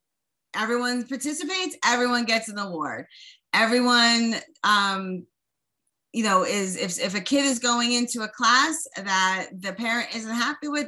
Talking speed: 145 wpm